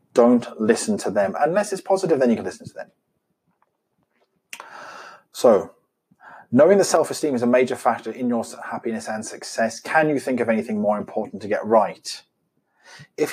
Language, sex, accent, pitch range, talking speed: English, male, British, 110-140 Hz, 165 wpm